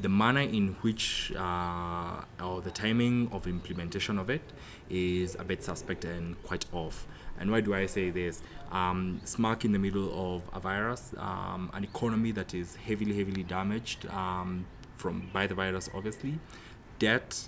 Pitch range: 90-110 Hz